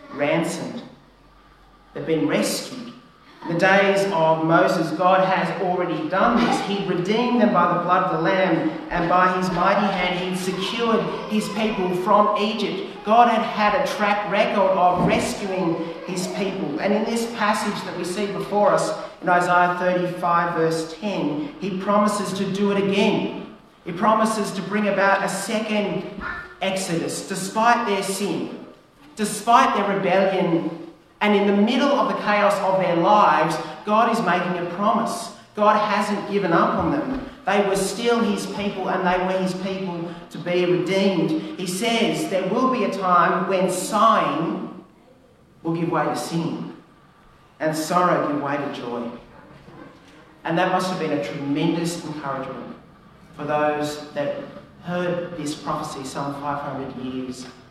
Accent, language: Australian, English